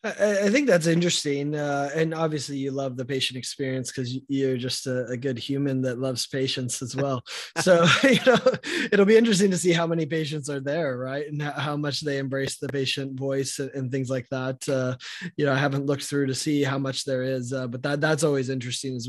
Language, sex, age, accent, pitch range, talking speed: English, male, 20-39, American, 135-160 Hz, 220 wpm